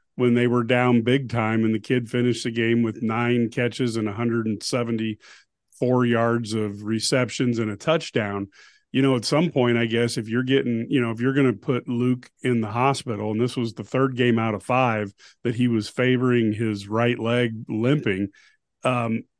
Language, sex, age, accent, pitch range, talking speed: English, male, 40-59, American, 110-125 Hz, 190 wpm